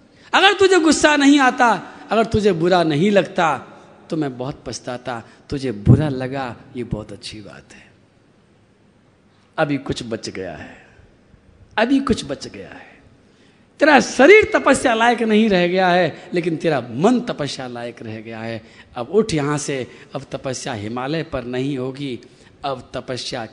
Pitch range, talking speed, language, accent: 120-185 Hz, 165 wpm, Hindi, native